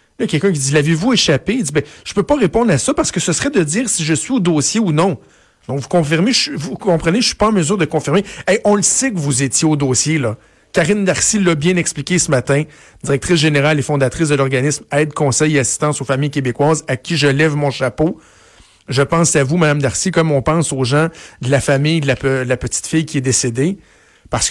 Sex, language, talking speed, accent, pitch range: male, French, 265 wpm, Canadian, 125-165 Hz